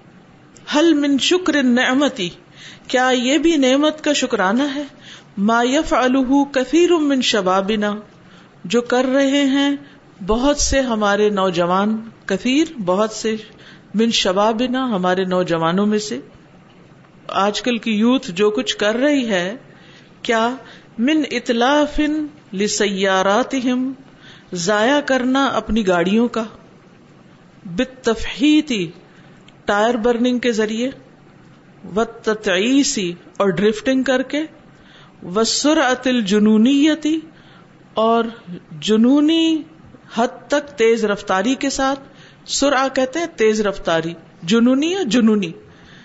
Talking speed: 100 wpm